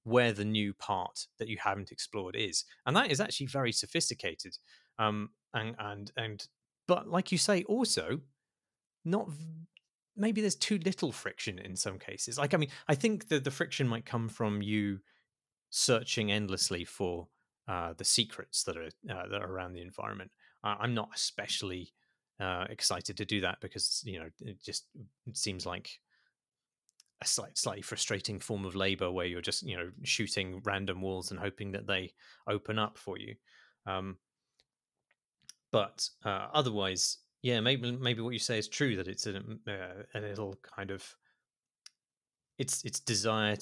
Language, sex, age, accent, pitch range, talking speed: English, male, 30-49, British, 95-120 Hz, 170 wpm